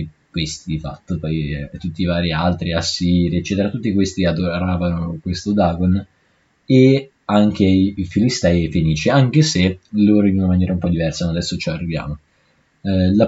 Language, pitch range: Italian, 85-100 Hz